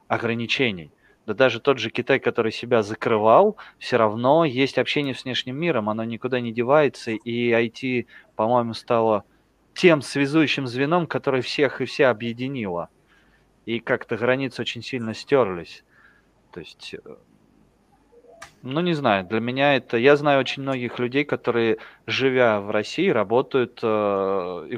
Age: 20-39